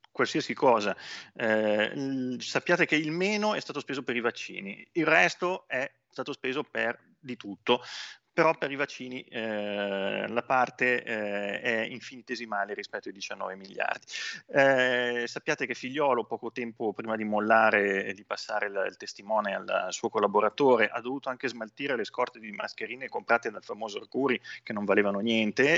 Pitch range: 105-130 Hz